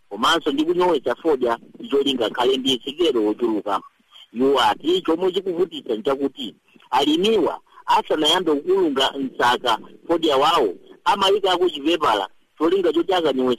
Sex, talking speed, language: male, 135 wpm, English